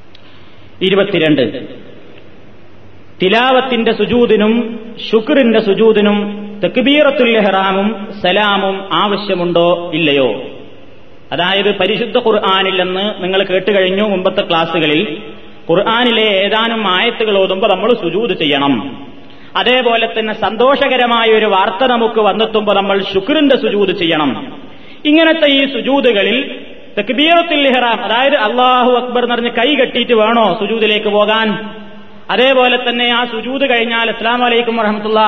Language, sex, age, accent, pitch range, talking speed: Malayalam, male, 30-49, native, 190-240 Hz, 95 wpm